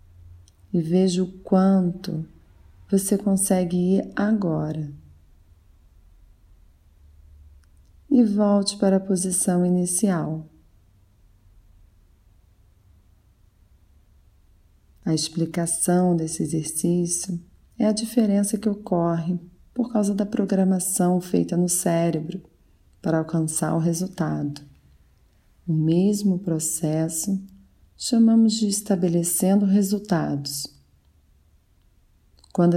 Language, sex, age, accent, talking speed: Portuguese, female, 30-49, Brazilian, 75 wpm